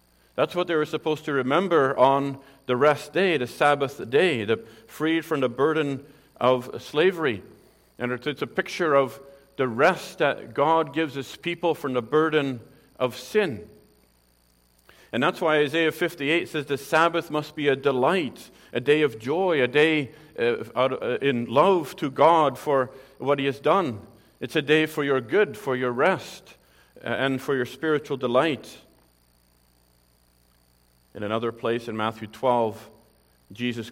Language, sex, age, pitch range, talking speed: English, male, 50-69, 110-140 Hz, 150 wpm